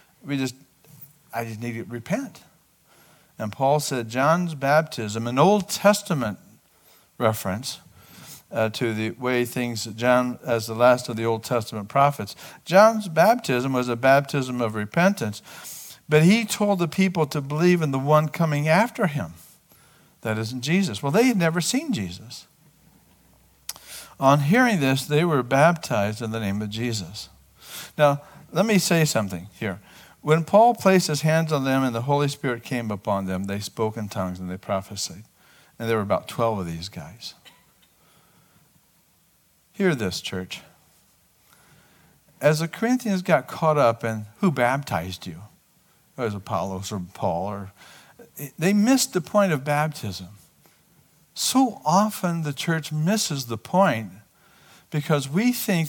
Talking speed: 150 wpm